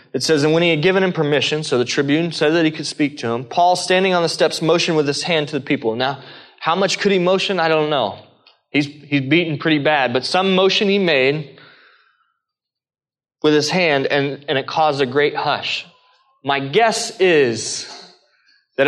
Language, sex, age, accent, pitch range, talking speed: English, male, 20-39, American, 135-180 Hz, 205 wpm